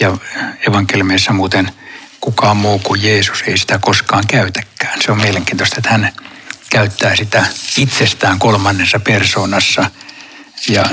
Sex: male